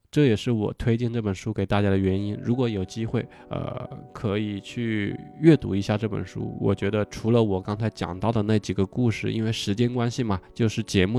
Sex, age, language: male, 20-39, Chinese